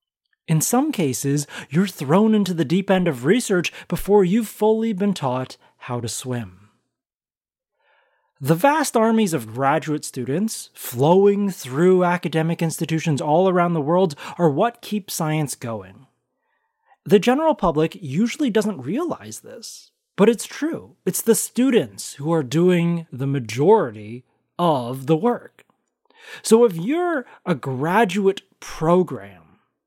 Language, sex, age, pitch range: English, male, 30-49, 150-225 Hz